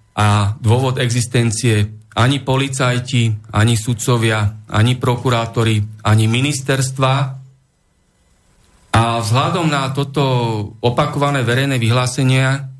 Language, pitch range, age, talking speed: Slovak, 105-130 Hz, 40-59, 85 wpm